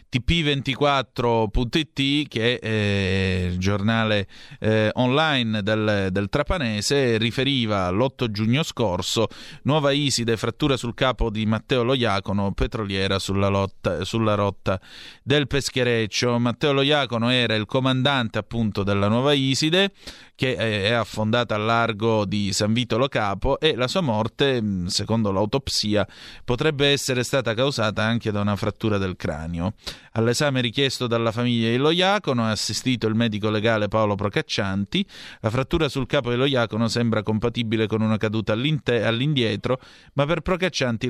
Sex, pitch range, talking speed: male, 105-135 Hz, 130 wpm